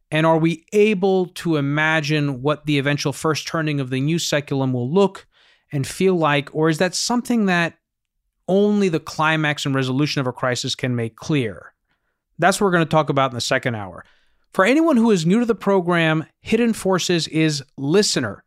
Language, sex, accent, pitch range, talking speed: English, male, American, 140-190 Hz, 190 wpm